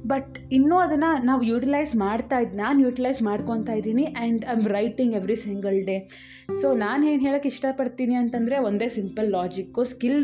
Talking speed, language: 160 wpm, Kannada